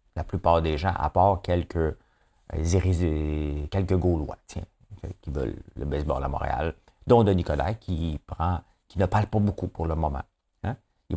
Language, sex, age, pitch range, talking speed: French, male, 50-69, 80-95 Hz, 160 wpm